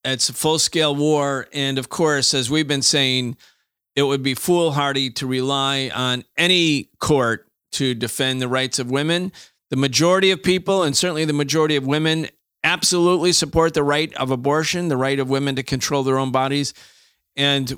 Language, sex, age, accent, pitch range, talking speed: English, male, 40-59, American, 135-165 Hz, 175 wpm